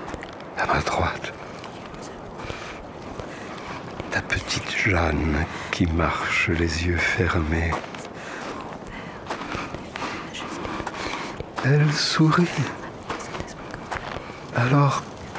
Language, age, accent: French, 60-79, French